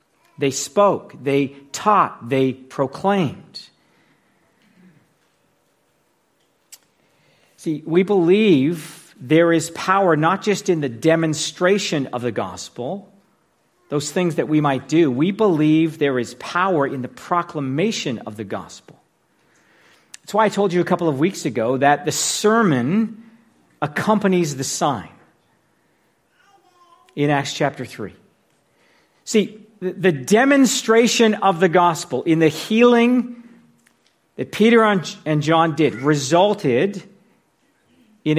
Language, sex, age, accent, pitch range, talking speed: English, male, 50-69, American, 145-200 Hz, 115 wpm